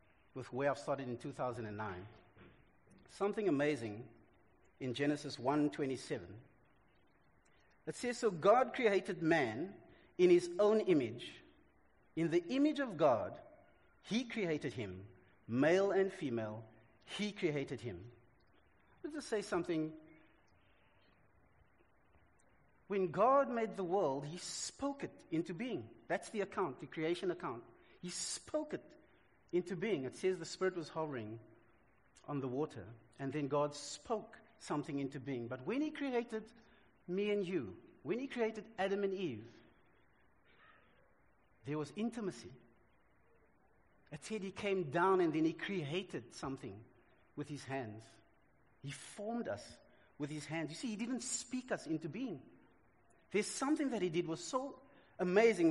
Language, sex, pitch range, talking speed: English, male, 130-205 Hz, 140 wpm